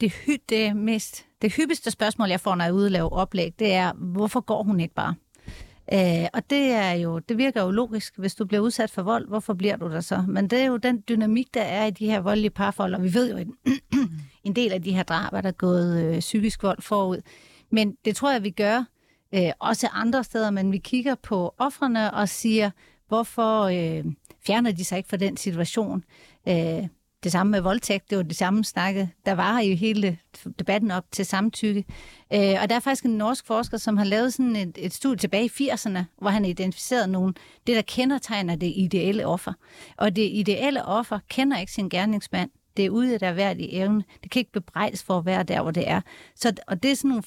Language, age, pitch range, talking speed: Danish, 40-59, 185-225 Hz, 220 wpm